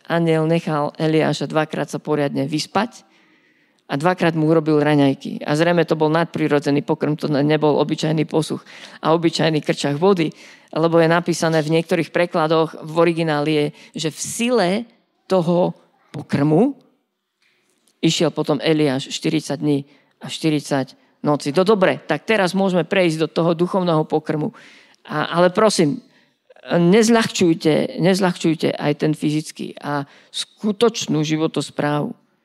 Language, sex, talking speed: Slovak, female, 130 wpm